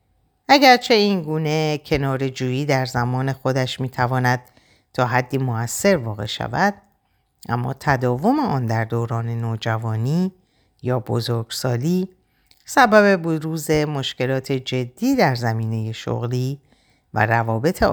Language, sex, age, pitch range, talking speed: Persian, female, 50-69, 120-155 Hz, 105 wpm